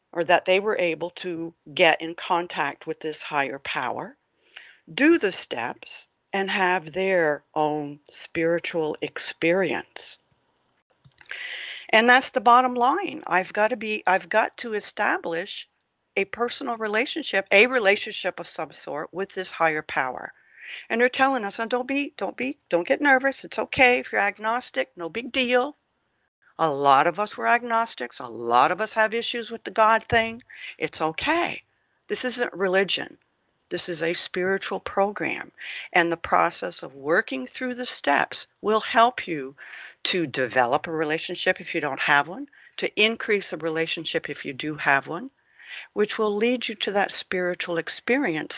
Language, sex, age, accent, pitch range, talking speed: English, female, 60-79, American, 165-235 Hz, 160 wpm